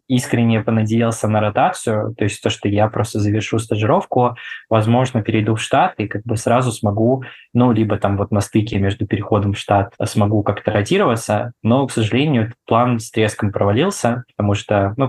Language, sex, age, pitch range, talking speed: Russian, male, 20-39, 100-115 Hz, 175 wpm